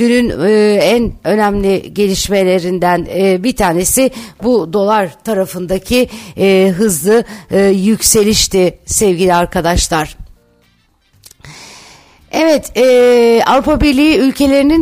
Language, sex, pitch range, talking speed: Turkish, female, 200-245 Hz, 70 wpm